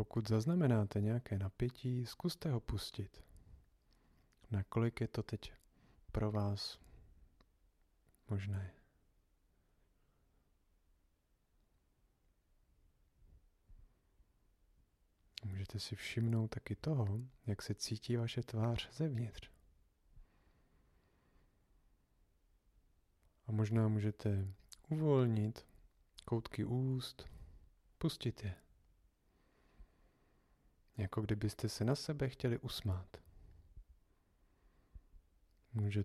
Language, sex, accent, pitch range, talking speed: Czech, male, native, 85-115 Hz, 70 wpm